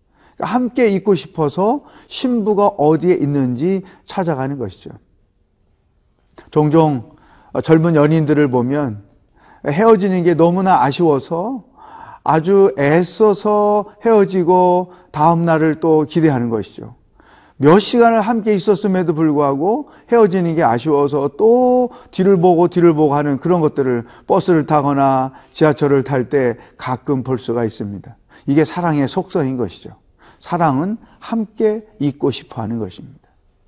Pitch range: 145-210 Hz